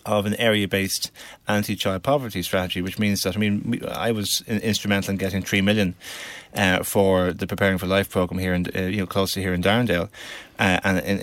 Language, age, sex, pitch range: English, 30-49, male, 95-110 Hz